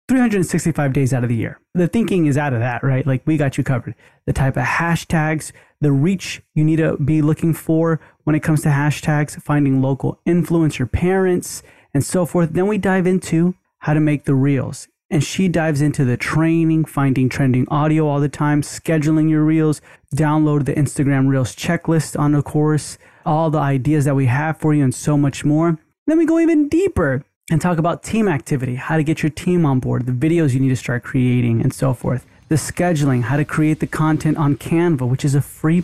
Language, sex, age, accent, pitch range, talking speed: English, male, 20-39, American, 135-160 Hz, 210 wpm